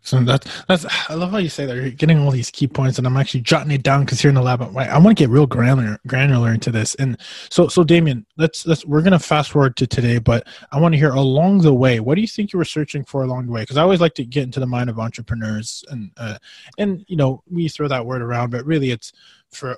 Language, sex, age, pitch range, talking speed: English, male, 20-39, 125-150 Hz, 280 wpm